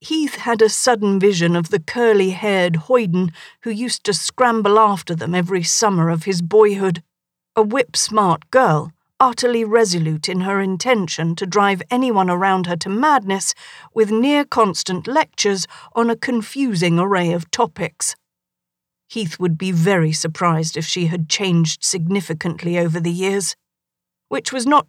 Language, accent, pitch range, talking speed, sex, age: English, British, 170-225 Hz, 145 wpm, female, 40-59